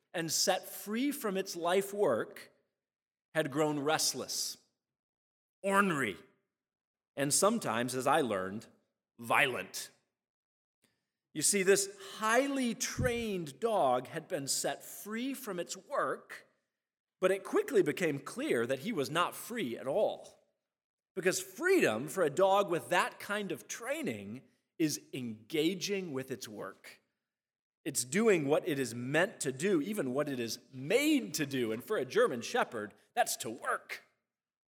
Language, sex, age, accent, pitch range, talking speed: English, male, 40-59, American, 130-200 Hz, 140 wpm